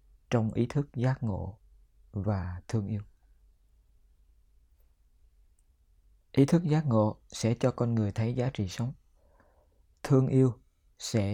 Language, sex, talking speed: Vietnamese, male, 120 wpm